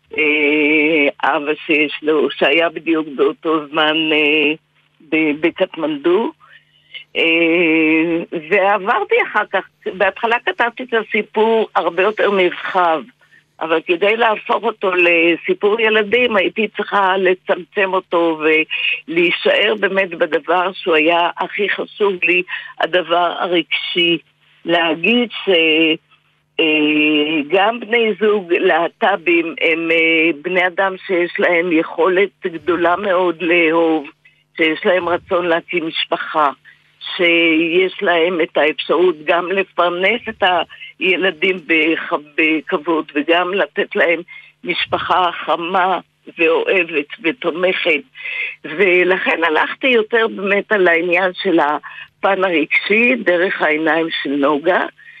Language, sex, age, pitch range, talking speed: Hebrew, female, 50-69, 165-210 Hz, 95 wpm